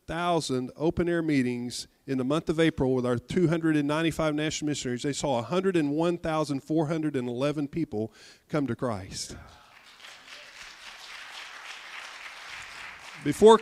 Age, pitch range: 50-69, 125-165 Hz